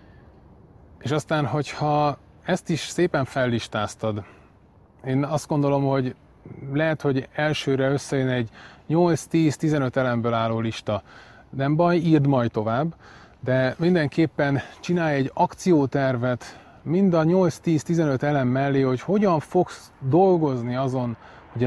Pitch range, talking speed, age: 115-155 Hz, 110 wpm, 30-49